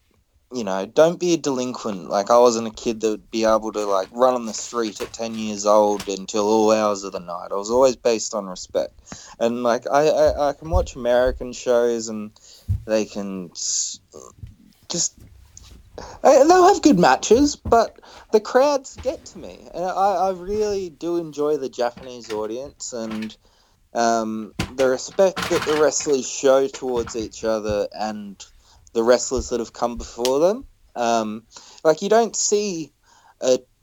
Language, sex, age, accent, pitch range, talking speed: English, male, 20-39, Australian, 110-135 Hz, 170 wpm